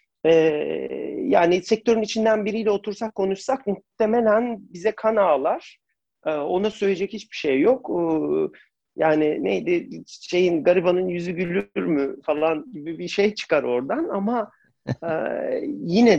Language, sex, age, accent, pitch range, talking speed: Turkish, male, 40-59, native, 150-210 Hz, 110 wpm